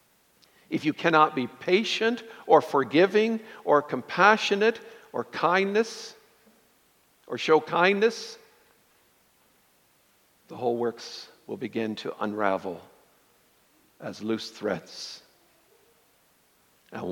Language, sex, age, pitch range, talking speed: English, male, 60-79, 125-175 Hz, 90 wpm